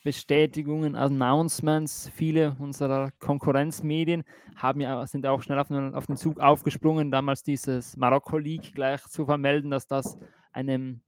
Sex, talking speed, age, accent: male, 140 wpm, 20-39, German